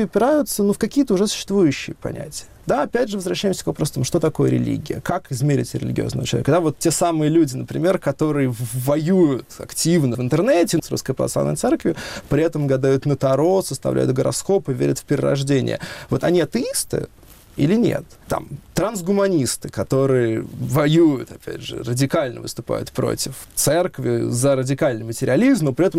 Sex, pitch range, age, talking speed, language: male, 130-185 Hz, 20-39, 155 wpm, Russian